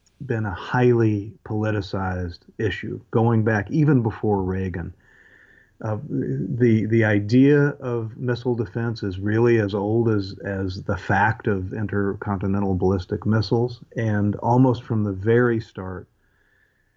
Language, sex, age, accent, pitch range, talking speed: English, male, 40-59, American, 95-115 Hz, 125 wpm